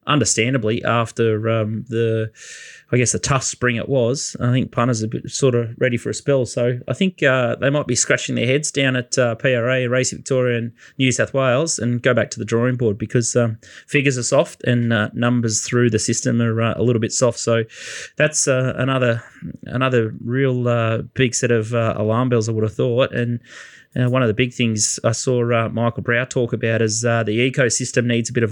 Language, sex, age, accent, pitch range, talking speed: English, male, 20-39, Australian, 115-130 Hz, 225 wpm